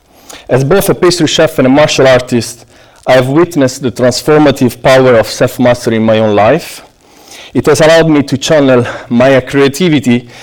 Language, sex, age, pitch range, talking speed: English, male, 50-69, 120-150 Hz, 160 wpm